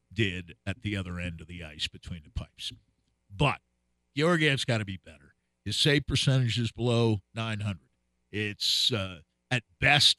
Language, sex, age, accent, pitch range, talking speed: English, male, 50-69, American, 100-135 Hz, 165 wpm